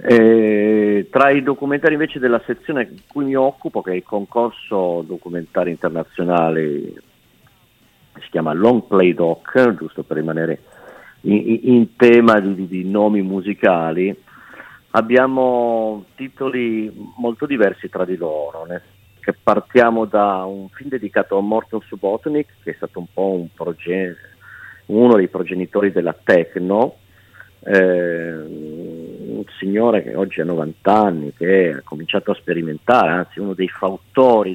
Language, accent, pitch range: Italian, native, 85-110 Hz